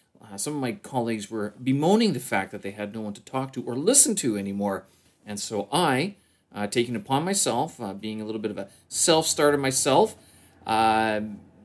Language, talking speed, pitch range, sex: English, 200 wpm, 105-145 Hz, male